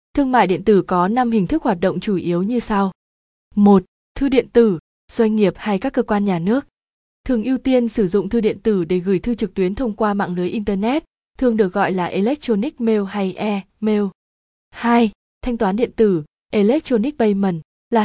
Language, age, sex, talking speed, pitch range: Vietnamese, 20-39, female, 200 wpm, 190-235 Hz